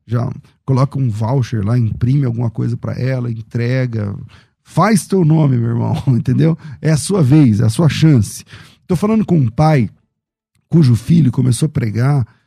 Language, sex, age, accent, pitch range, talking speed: Portuguese, male, 40-59, Brazilian, 125-160 Hz, 170 wpm